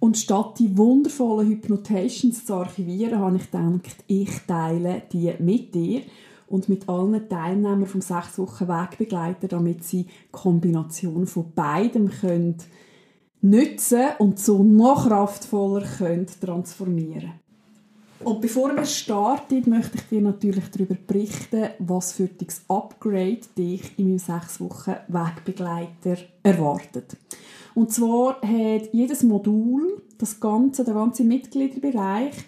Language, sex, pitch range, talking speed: German, female, 190-230 Hz, 125 wpm